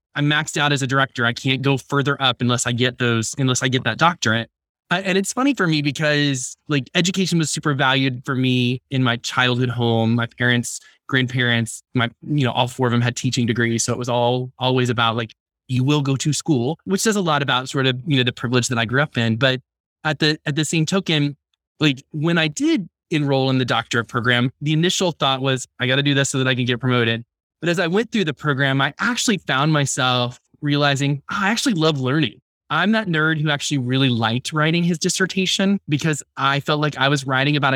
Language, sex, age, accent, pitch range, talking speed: English, male, 20-39, American, 125-155 Hz, 230 wpm